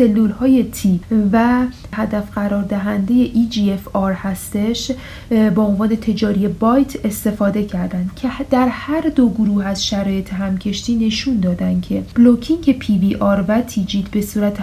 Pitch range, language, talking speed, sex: 205-245 Hz, Persian, 145 wpm, female